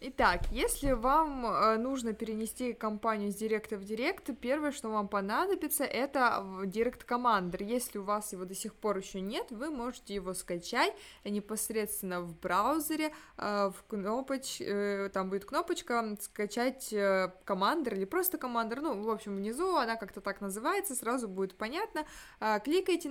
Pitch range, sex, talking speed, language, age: 200-270 Hz, female, 145 wpm, Russian, 20-39